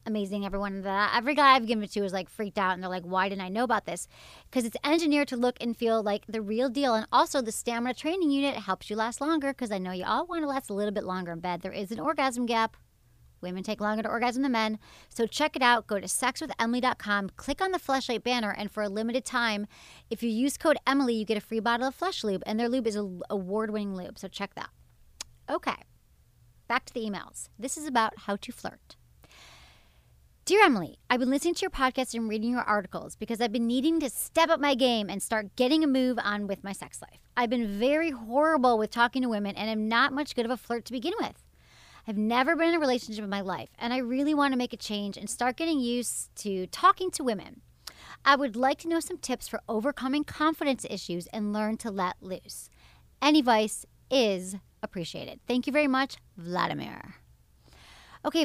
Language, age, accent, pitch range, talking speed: English, 30-49, American, 200-265 Hz, 230 wpm